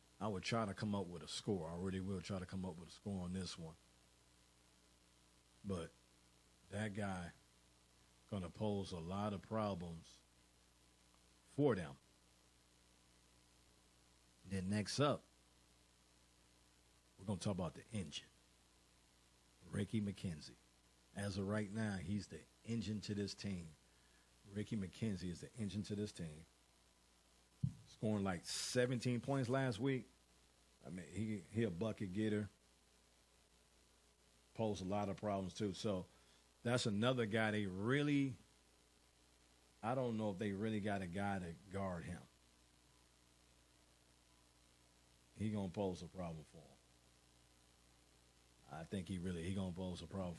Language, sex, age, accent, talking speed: English, male, 50-69, American, 140 wpm